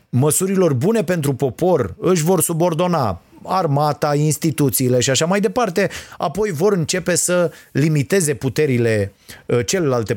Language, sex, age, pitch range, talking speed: Romanian, male, 30-49, 125-175 Hz, 120 wpm